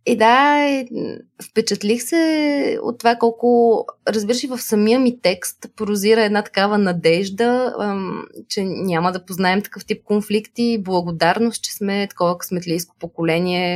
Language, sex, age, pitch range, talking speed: Bulgarian, female, 20-39, 175-235 Hz, 125 wpm